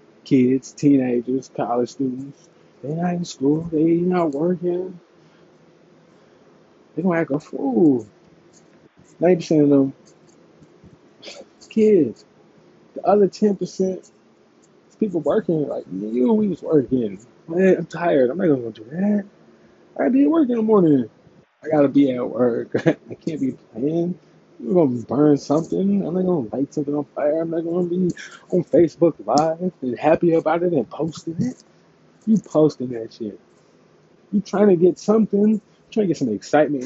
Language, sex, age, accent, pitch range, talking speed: English, male, 20-39, American, 135-180 Hz, 160 wpm